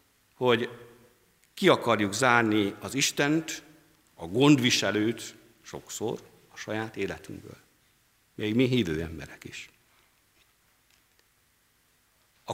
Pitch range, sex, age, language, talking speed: 105-165 Hz, male, 50-69, Hungarian, 85 wpm